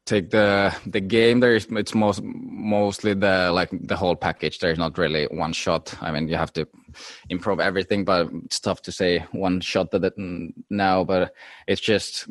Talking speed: 195 wpm